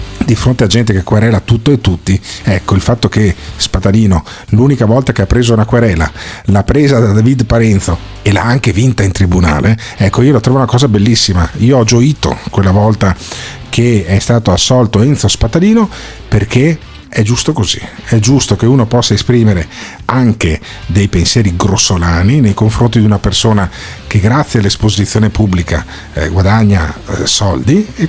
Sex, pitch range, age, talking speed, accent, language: male, 100-125 Hz, 50-69, 165 wpm, native, Italian